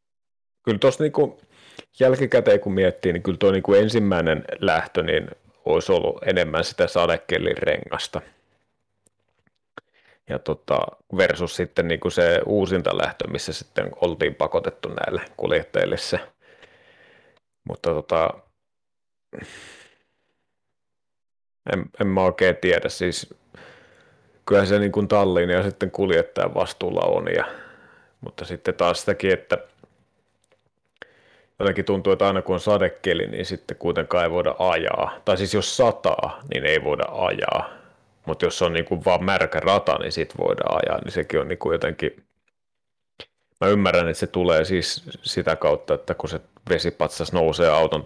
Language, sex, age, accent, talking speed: Finnish, male, 30-49, native, 135 wpm